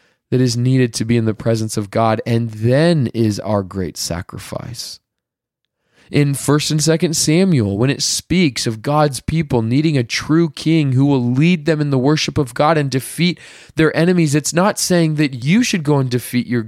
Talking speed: 195 wpm